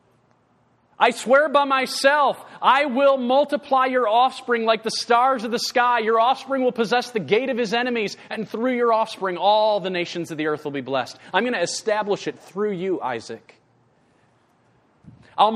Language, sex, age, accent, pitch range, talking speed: English, male, 40-59, American, 205-255 Hz, 175 wpm